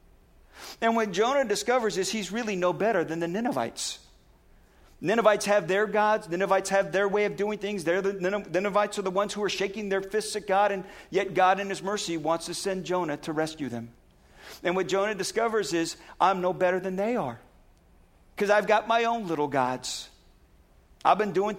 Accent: American